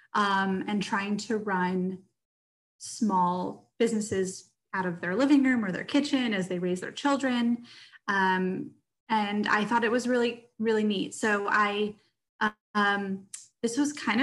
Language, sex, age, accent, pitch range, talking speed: English, female, 20-39, American, 190-230 Hz, 150 wpm